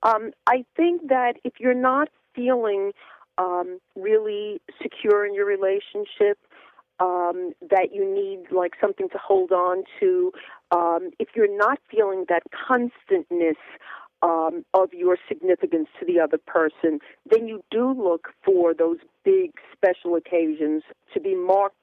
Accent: American